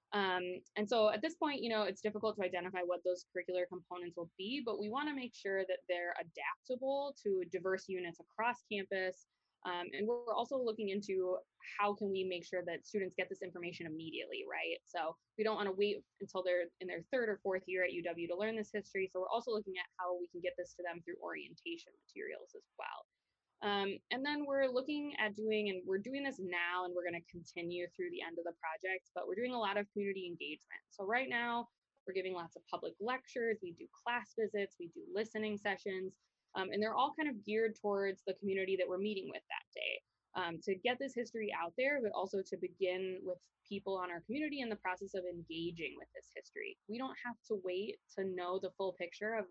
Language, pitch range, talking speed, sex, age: English, 180-240 Hz, 225 wpm, female, 20-39